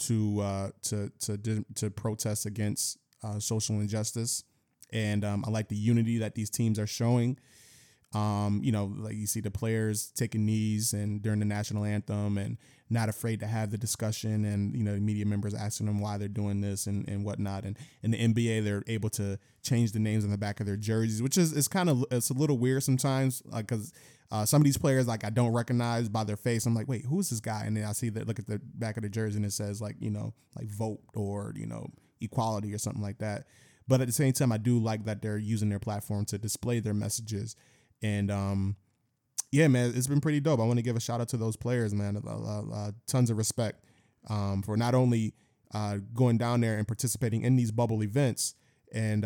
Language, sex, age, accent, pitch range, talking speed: English, male, 20-39, American, 105-120 Hz, 230 wpm